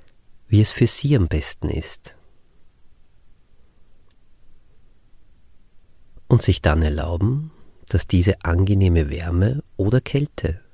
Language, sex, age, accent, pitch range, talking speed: German, male, 40-59, German, 80-105 Hz, 95 wpm